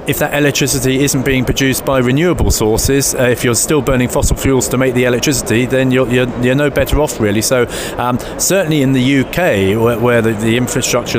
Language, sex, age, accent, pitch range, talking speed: English, male, 30-49, British, 120-145 Hz, 210 wpm